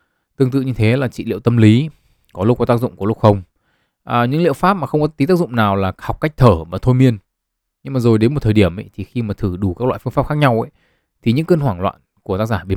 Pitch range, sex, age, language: 100-130 Hz, male, 20-39, Vietnamese